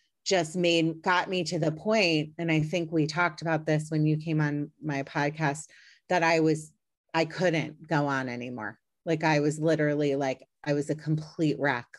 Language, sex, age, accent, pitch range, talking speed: English, female, 30-49, American, 145-165 Hz, 190 wpm